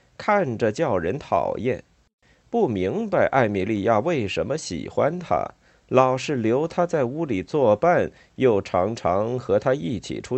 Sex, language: male, Chinese